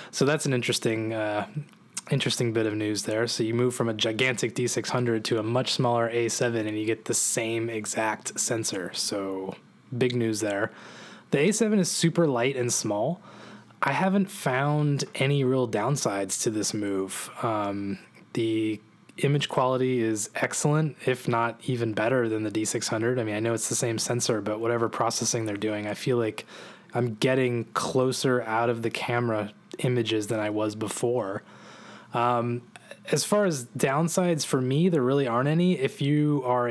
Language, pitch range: English, 110-140 Hz